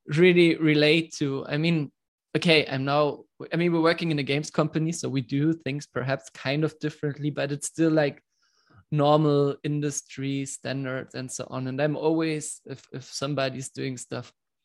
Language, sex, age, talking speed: English, male, 20-39, 170 wpm